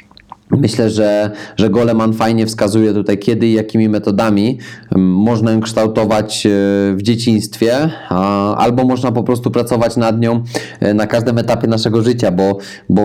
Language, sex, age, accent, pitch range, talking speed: Polish, male, 20-39, native, 100-115 Hz, 140 wpm